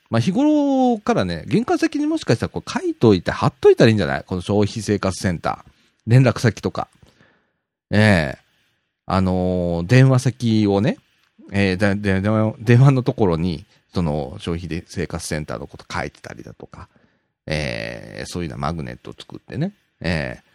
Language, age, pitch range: Japanese, 40-59, 85-140 Hz